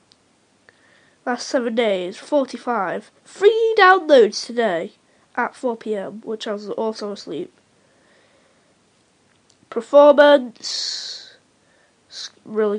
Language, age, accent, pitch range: English, 20-39, British, 225-290 Hz